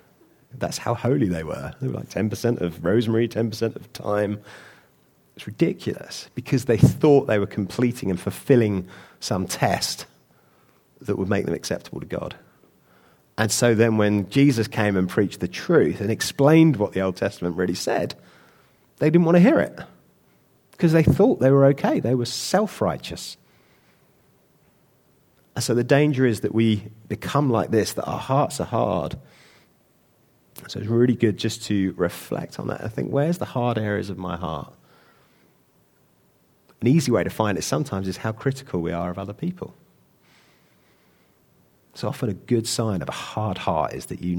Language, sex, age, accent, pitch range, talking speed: English, male, 30-49, British, 95-125 Hz, 170 wpm